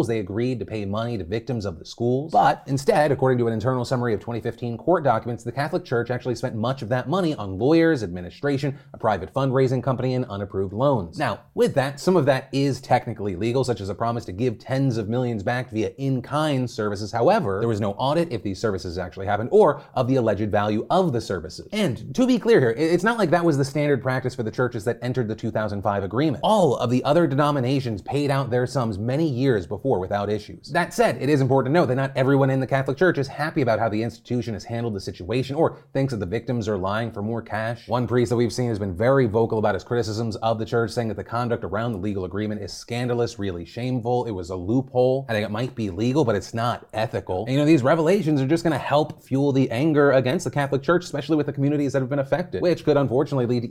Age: 30-49